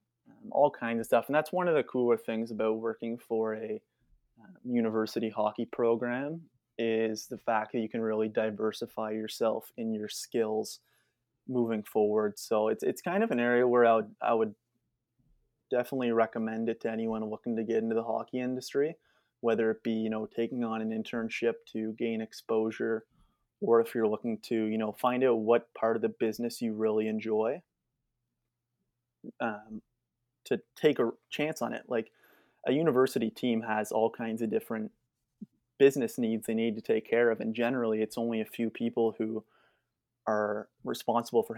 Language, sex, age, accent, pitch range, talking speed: English, male, 20-39, American, 110-120 Hz, 170 wpm